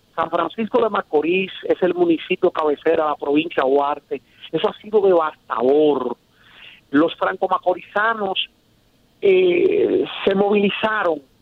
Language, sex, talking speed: Spanish, male, 115 wpm